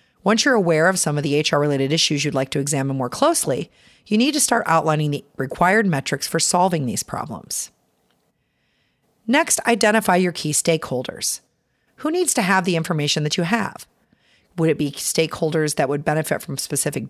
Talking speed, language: 175 wpm, English